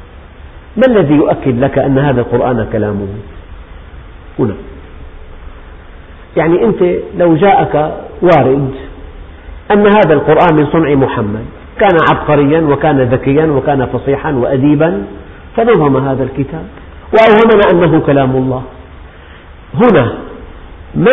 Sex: male